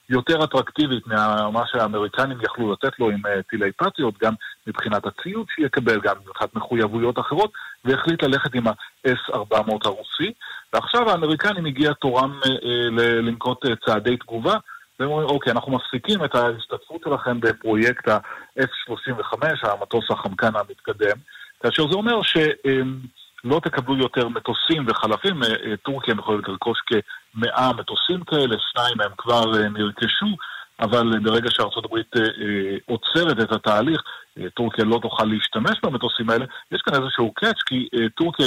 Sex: male